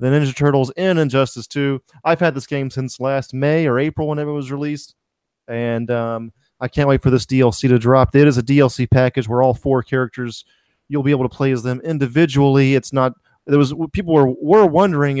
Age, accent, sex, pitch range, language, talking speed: 30-49, American, male, 120-145 Hz, English, 215 wpm